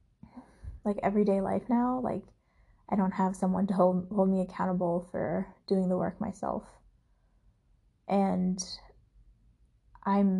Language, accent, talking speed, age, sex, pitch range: English, American, 120 wpm, 20-39, female, 190-220 Hz